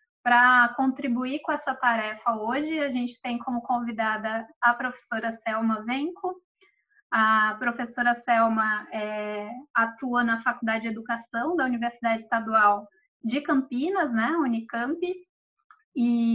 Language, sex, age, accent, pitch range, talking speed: Portuguese, female, 20-39, Brazilian, 230-275 Hz, 115 wpm